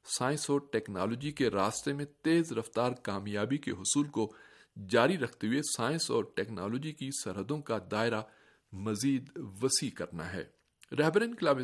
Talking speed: 145 wpm